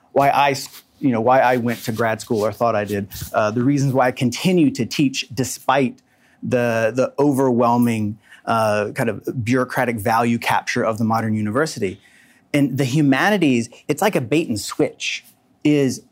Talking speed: 170 wpm